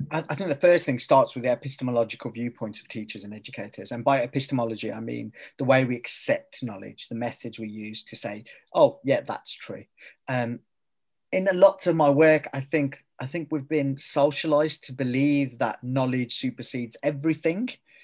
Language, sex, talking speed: English, male, 180 wpm